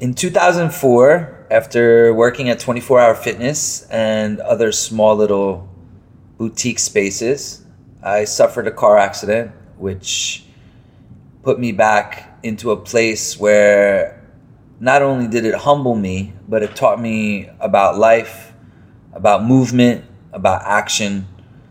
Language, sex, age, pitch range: English, male, 30-49, 105-125 Hz